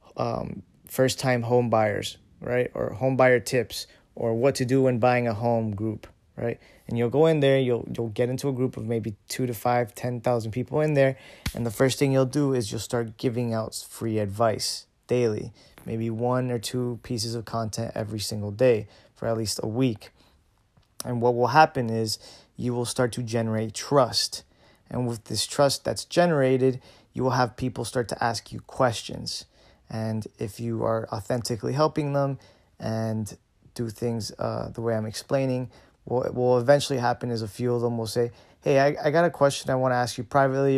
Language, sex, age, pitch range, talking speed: English, male, 30-49, 115-130 Hz, 195 wpm